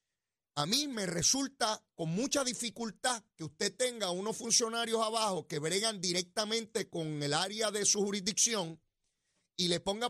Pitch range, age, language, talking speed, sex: 175-240 Hz, 30-49, Spanish, 150 wpm, male